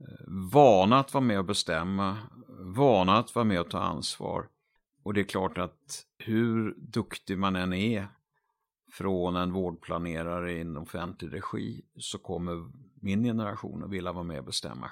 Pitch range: 90-115 Hz